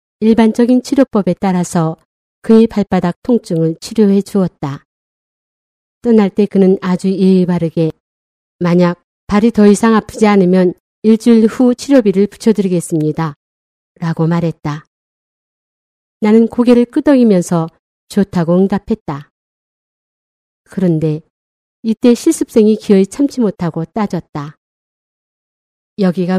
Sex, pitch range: female, 175-220 Hz